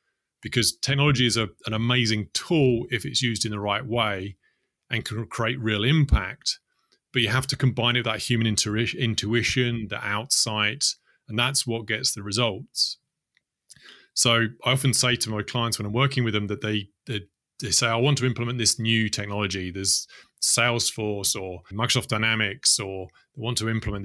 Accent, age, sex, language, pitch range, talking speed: British, 30-49, male, English, 105-125 Hz, 180 wpm